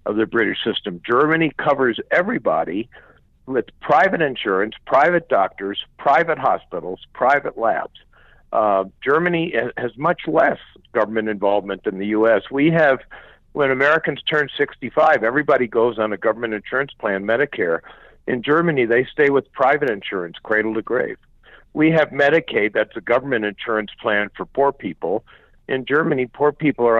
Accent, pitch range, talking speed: American, 110-145 Hz, 145 wpm